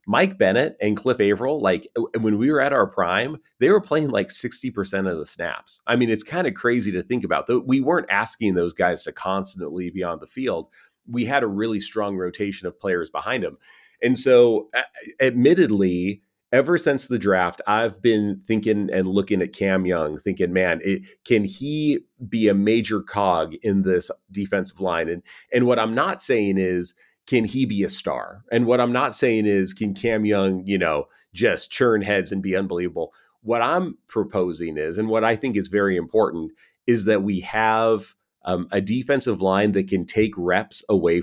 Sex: male